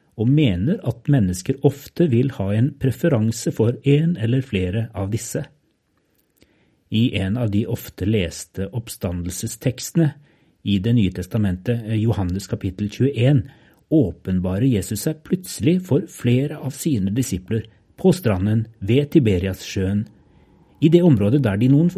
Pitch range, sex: 100-140 Hz, male